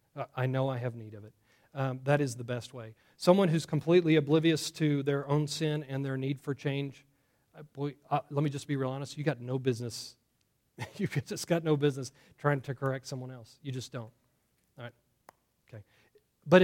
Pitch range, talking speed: 130-170 Hz, 200 wpm